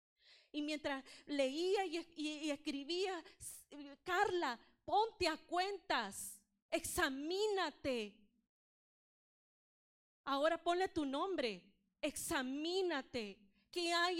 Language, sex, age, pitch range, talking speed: English, female, 30-49, 255-325 Hz, 80 wpm